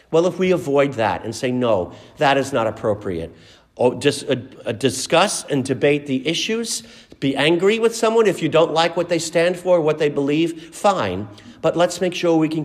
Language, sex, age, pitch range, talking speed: English, male, 50-69, 120-165 Hz, 190 wpm